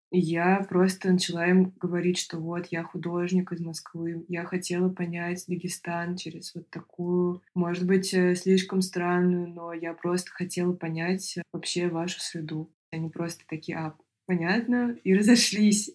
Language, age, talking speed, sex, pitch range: Russian, 20-39, 145 wpm, female, 165-185 Hz